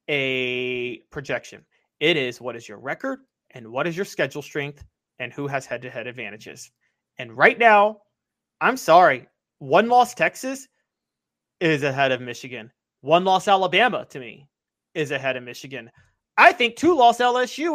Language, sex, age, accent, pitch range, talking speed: English, male, 30-49, American, 140-225 Hz, 160 wpm